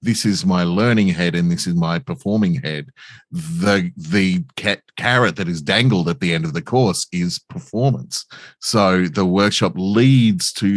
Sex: male